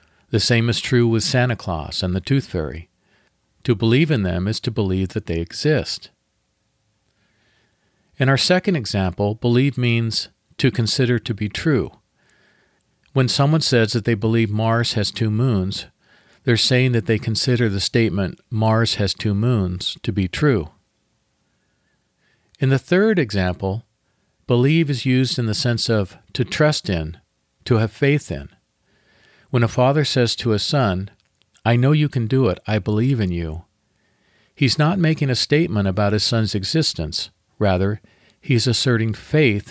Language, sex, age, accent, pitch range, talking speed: English, male, 50-69, American, 100-130 Hz, 155 wpm